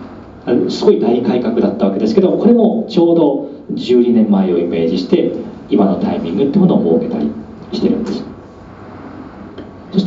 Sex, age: male, 40-59